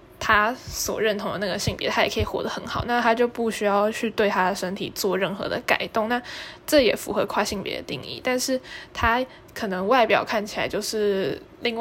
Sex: female